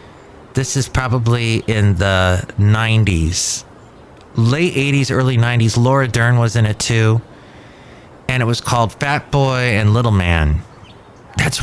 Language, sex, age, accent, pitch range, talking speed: English, male, 30-49, American, 100-125 Hz, 135 wpm